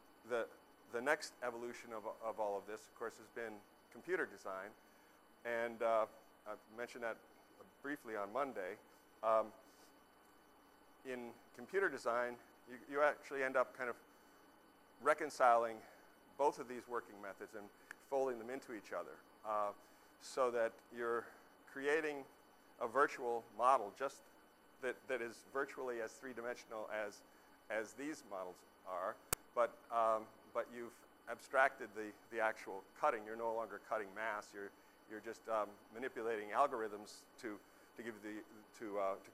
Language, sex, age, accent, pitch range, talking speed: English, male, 50-69, American, 110-120 Hz, 145 wpm